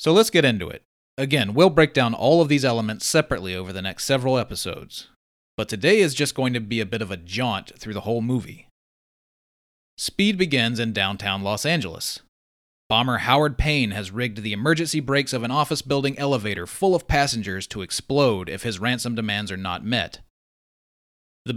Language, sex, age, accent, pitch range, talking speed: English, male, 30-49, American, 100-140 Hz, 185 wpm